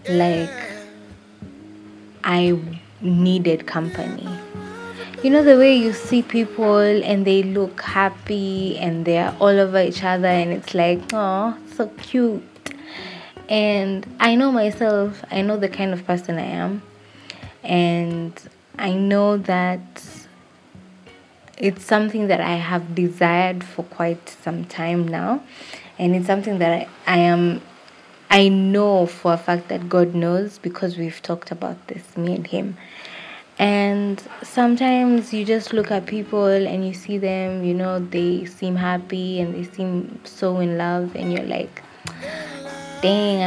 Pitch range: 175-210 Hz